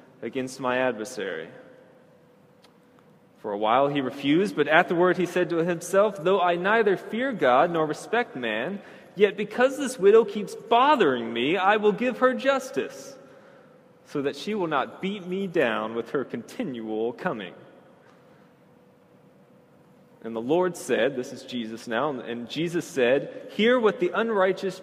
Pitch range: 130-180 Hz